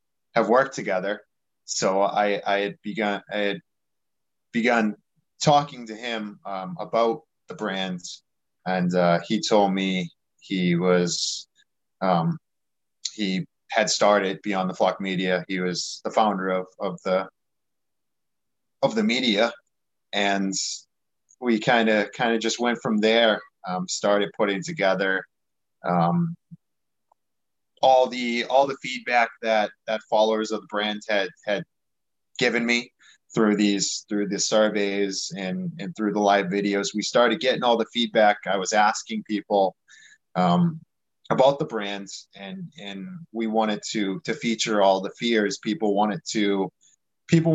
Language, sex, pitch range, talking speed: English, male, 100-115 Hz, 140 wpm